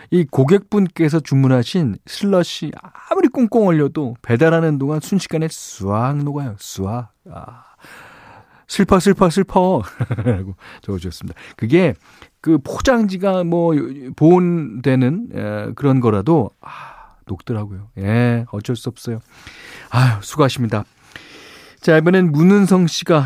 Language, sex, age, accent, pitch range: Korean, male, 40-59, native, 110-165 Hz